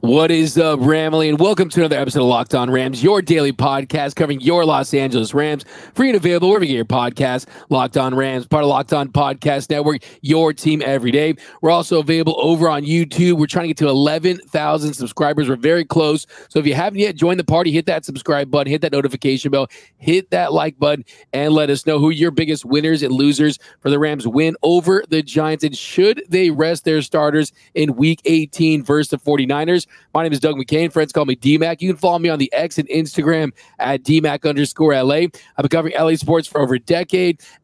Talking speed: 220 wpm